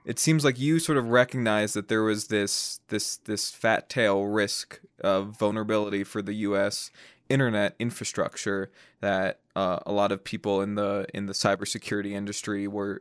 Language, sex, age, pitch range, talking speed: English, male, 20-39, 105-125 Hz, 165 wpm